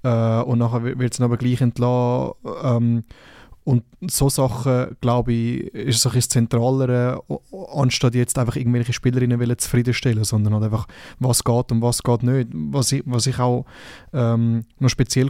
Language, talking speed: German, 155 wpm